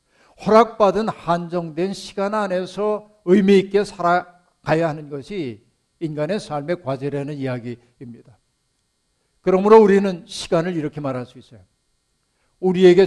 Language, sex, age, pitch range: Korean, male, 60-79, 145-190 Hz